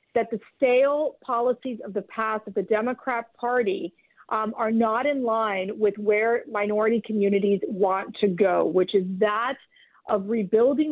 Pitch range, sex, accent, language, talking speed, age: 215-285 Hz, female, American, English, 155 wpm, 40-59